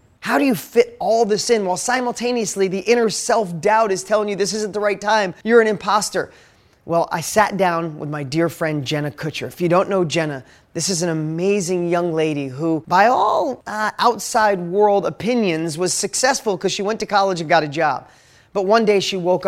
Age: 30-49